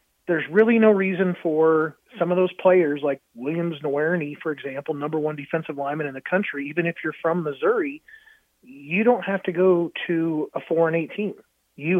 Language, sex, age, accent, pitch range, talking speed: English, male, 30-49, American, 155-190 Hz, 185 wpm